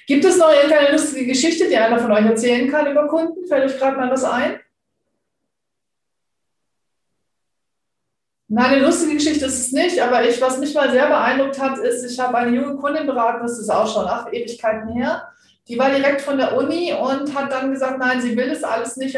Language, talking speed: German, 205 wpm